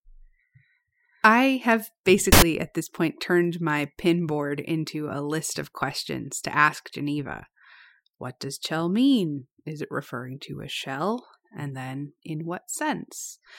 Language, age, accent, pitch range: English, 30-49, American, 145-185 Hz